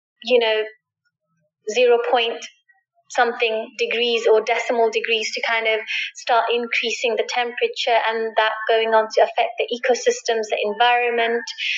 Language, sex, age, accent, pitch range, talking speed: English, female, 20-39, British, 235-275 Hz, 135 wpm